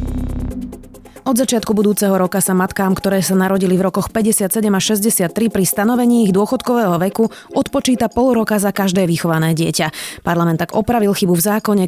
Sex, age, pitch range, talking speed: female, 20-39, 170-220 Hz, 160 wpm